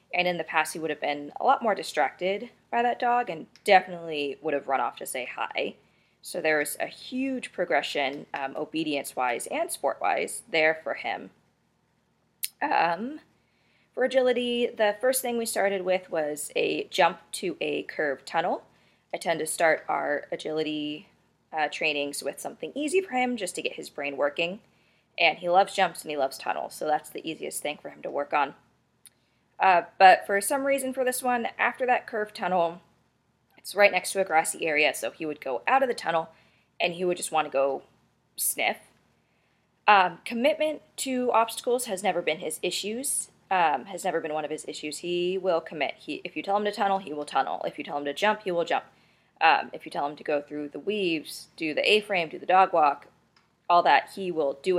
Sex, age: female, 20-39